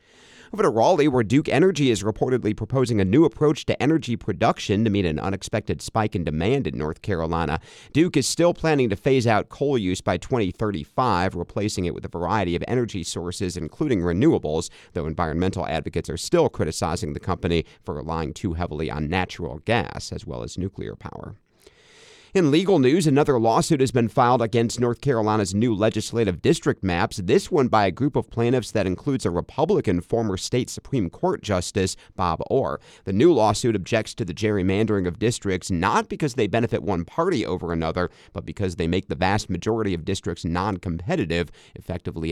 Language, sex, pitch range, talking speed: English, male, 85-115 Hz, 180 wpm